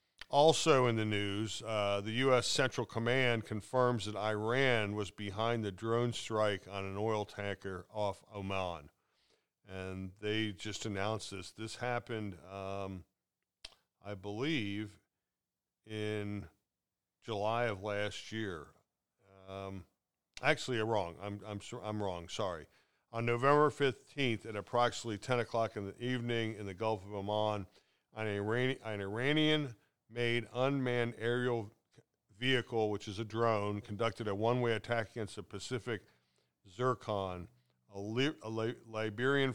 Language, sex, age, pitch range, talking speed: English, male, 50-69, 100-120 Hz, 130 wpm